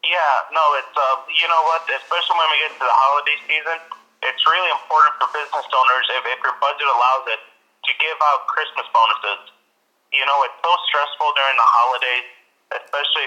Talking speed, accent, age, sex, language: 185 wpm, American, 30-49, male, English